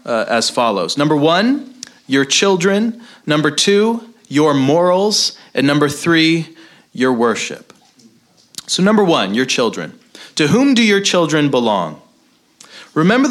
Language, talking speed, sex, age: English, 125 wpm, male, 30-49